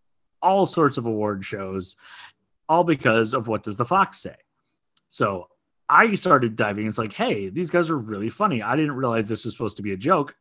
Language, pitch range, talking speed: English, 105-135 Hz, 200 wpm